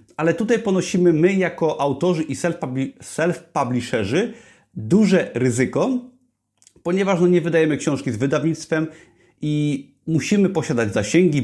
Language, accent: Polish, native